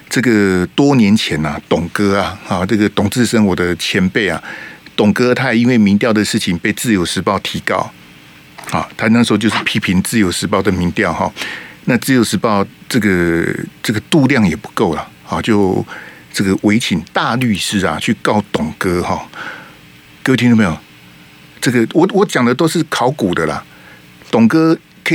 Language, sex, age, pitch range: Chinese, male, 50-69, 95-130 Hz